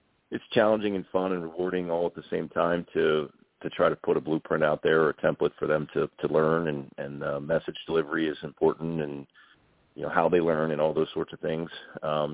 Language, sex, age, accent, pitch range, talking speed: English, male, 40-59, American, 75-80 Hz, 235 wpm